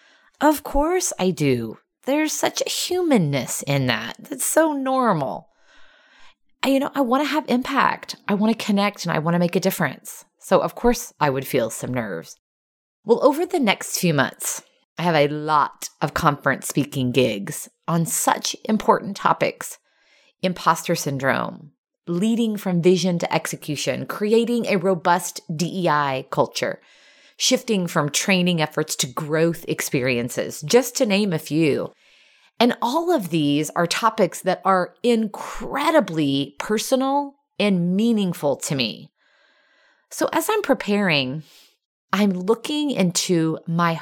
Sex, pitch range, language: female, 165-265 Hz, English